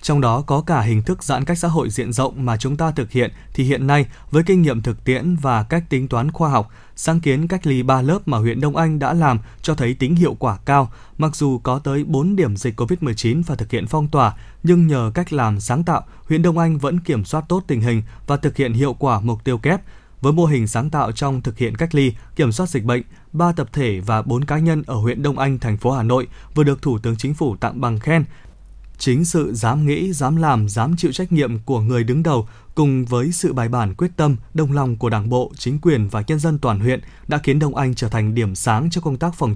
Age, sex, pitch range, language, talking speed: 20-39, male, 120-155 Hz, Vietnamese, 255 wpm